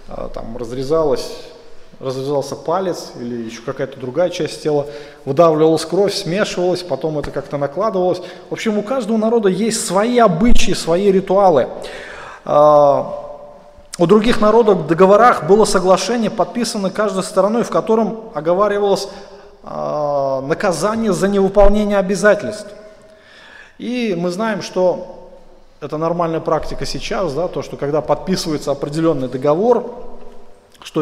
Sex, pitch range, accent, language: male, 160-210 Hz, native, Russian